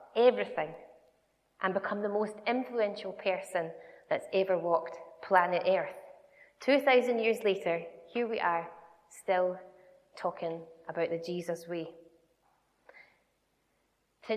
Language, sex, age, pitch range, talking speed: English, female, 20-39, 175-210 Hz, 105 wpm